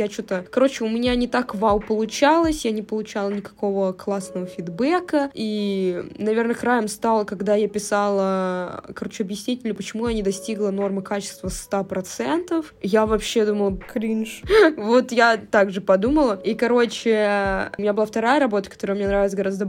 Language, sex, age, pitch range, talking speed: Russian, female, 20-39, 200-235 Hz, 155 wpm